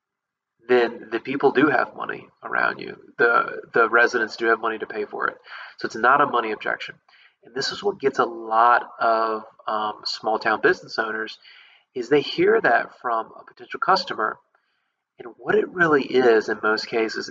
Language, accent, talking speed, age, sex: English, American, 185 wpm, 30-49, male